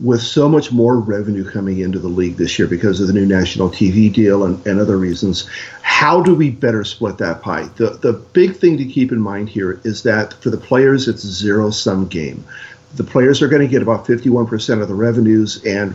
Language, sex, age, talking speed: English, male, 50-69, 220 wpm